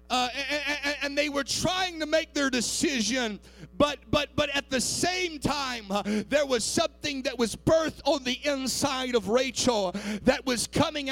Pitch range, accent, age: 245-305 Hz, American, 40-59